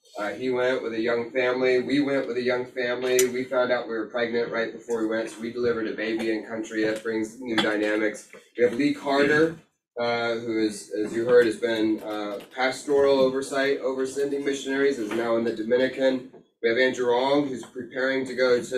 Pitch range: 110-130 Hz